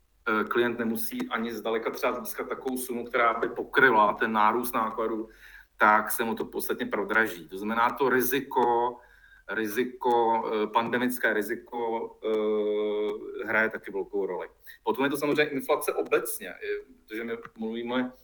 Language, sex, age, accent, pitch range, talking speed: Czech, male, 40-59, native, 110-150 Hz, 130 wpm